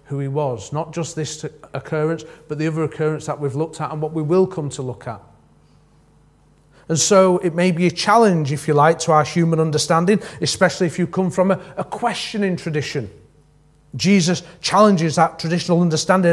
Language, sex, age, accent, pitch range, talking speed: English, male, 40-59, British, 140-175 Hz, 185 wpm